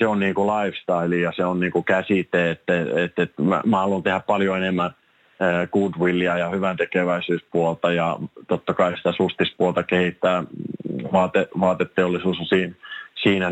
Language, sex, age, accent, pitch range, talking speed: Finnish, male, 30-49, native, 90-100 Hz, 150 wpm